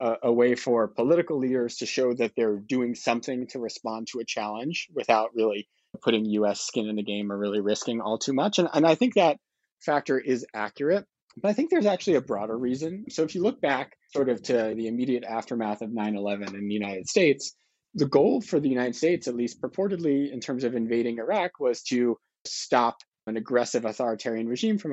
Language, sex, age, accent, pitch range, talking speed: English, male, 30-49, American, 110-140 Hz, 205 wpm